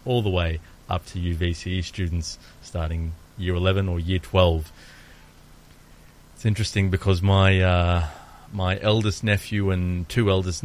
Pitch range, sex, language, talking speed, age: 85-110 Hz, male, Greek, 135 wpm, 30-49